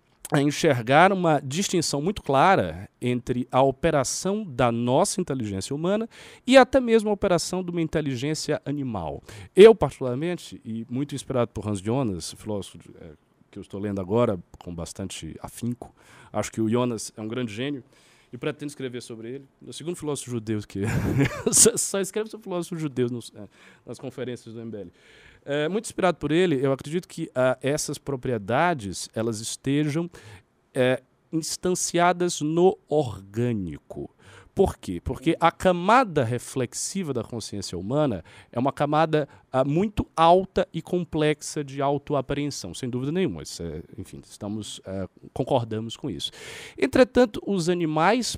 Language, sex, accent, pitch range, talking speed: Portuguese, male, Brazilian, 115-165 Hz, 150 wpm